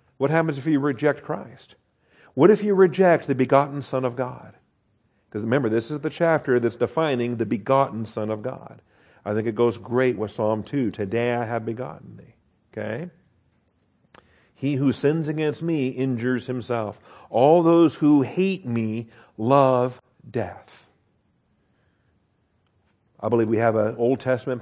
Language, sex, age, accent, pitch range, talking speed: English, male, 50-69, American, 115-140 Hz, 155 wpm